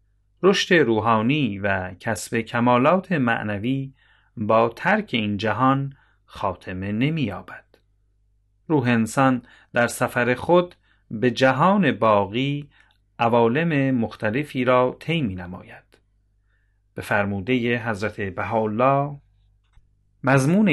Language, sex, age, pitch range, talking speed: Persian, male, 40-59, 100-130 Hz, 90 wpm